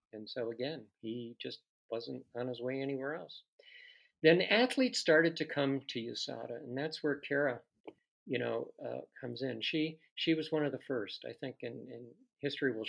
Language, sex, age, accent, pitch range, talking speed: English, male, 50-69, American, 120-150 Hz, 185 wpm